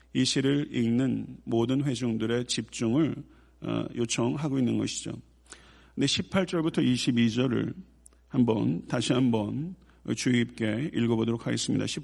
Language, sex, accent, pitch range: Korean, male, native, 115-135 Hz